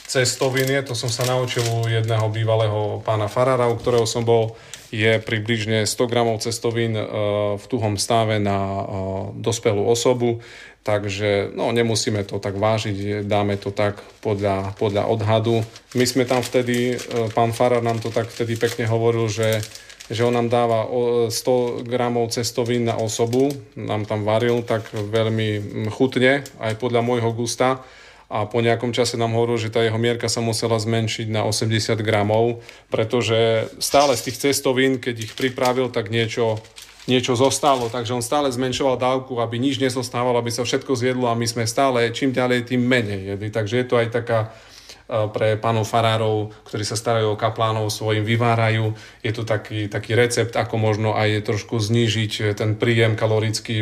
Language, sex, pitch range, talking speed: Slovak, male, 110-125 Hz, 165 wpm